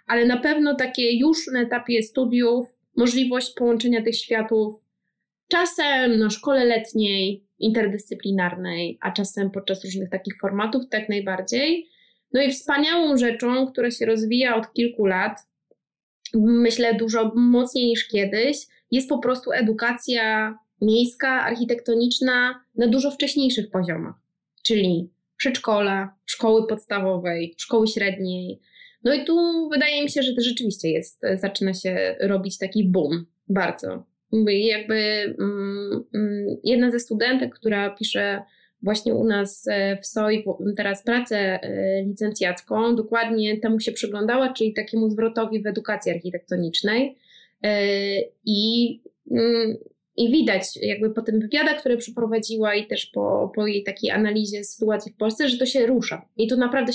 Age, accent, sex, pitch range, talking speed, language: 20-39, native, female, 205-245 Hz, 130 wpm, Polish